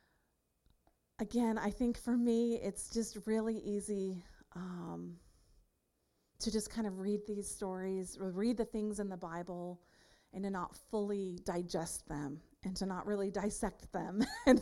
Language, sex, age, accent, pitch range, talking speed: English, female, 30-49, American, 180-220 Hz, 150 wpm